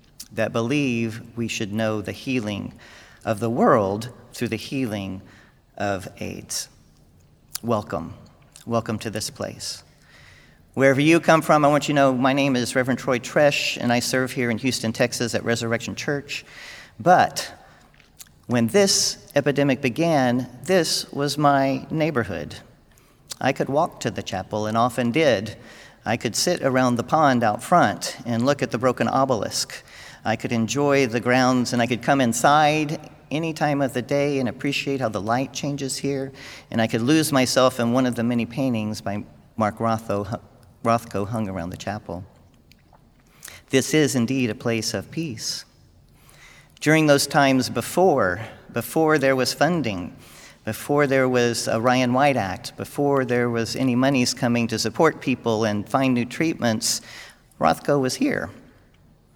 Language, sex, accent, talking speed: English, male, American, 155 wpm